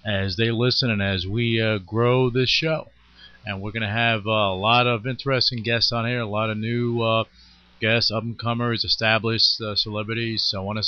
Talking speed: 195 wpm